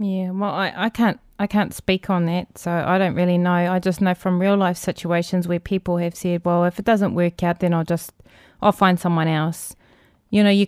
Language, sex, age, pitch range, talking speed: English, female, 20-39, 180-210 Hz, 235 wpm